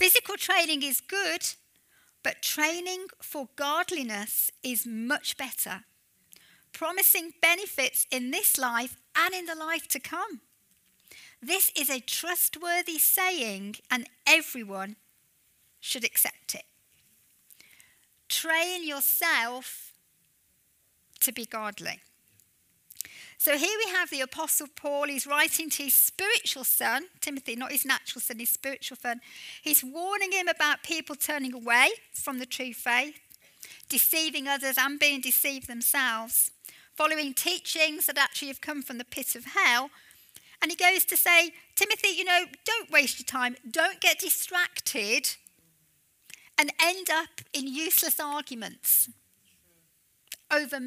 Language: English